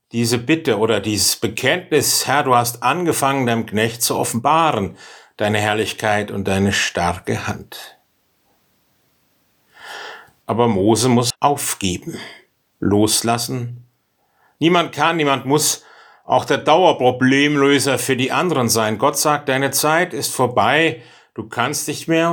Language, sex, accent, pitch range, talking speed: German, male, German, 115-150 Hz, 120 wpm